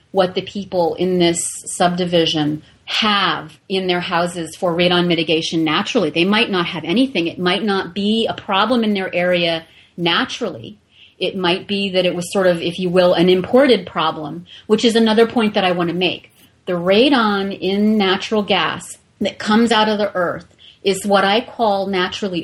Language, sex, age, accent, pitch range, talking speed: English, female, 30-49, American, 175-220 Hz, 180 wpm